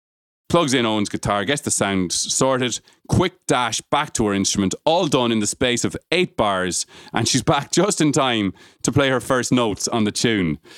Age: 30-49